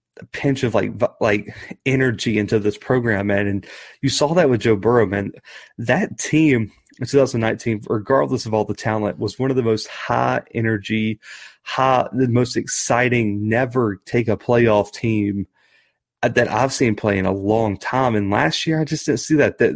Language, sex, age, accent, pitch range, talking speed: English, male, 30-49, American, 105-125 Hz, 175 wpm